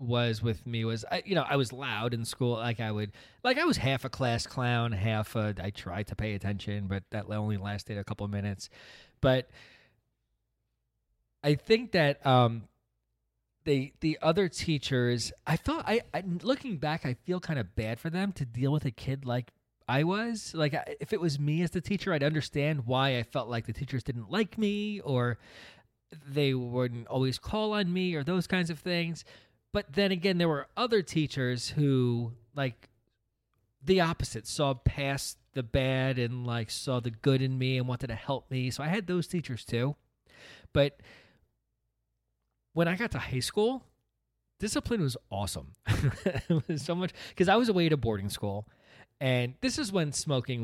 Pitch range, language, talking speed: 115-155 Hz, English, 185 wpm